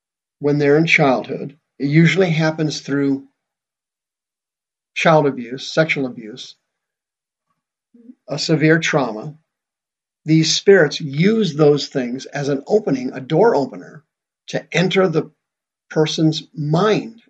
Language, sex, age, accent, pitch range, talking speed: English, male, 50-69, American, 140-190 Hz, 110 wpm